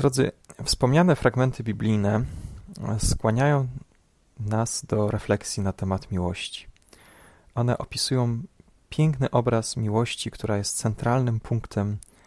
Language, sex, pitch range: Polish, male, 100-125 Hz